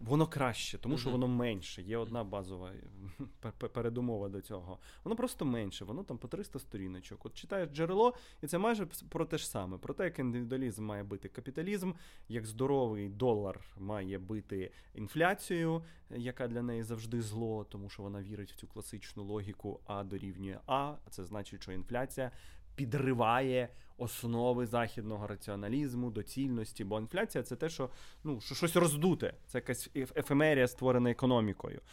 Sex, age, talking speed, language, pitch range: male, 20-39, 155 wpm, Ukrainian, 105-140 Hz